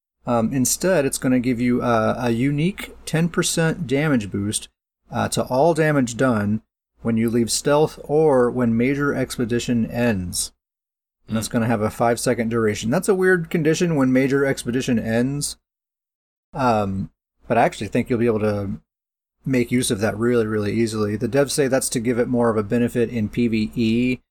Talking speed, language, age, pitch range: 180 wpm, English, 30-49, 115-135 Hz